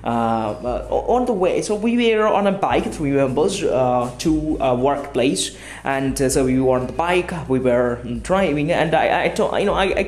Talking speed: 200 wpm